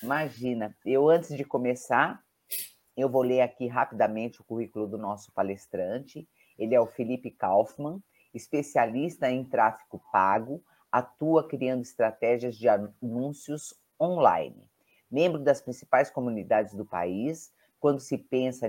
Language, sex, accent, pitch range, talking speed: Portuguese, female, Brazilian, 115-155 Hz, 125 wpm